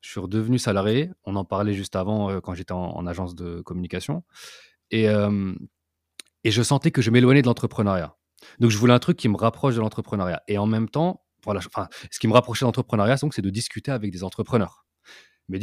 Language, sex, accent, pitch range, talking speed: French, male, French, 95-120 Hz, 215 wpm